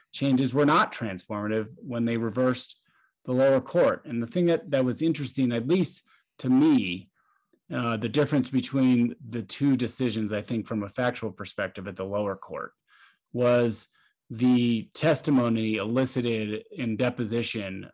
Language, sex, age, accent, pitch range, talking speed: English, male, 30-49, American, 110-135 Hz, 145 wpm